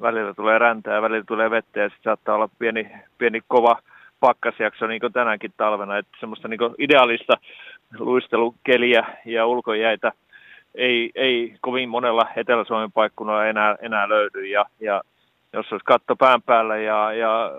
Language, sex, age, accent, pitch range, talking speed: Finnish, male, 30-49, native, 105-120 Hz, 145 wpm